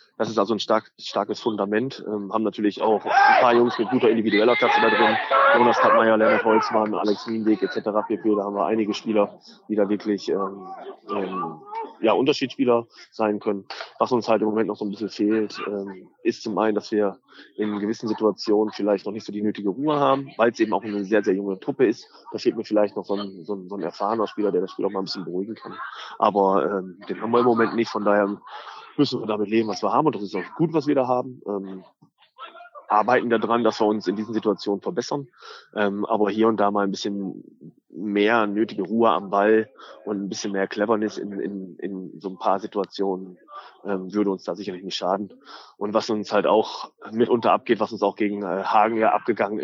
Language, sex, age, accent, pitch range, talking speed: German, male, 20-39, German, 100-115 Hz, 220 wpm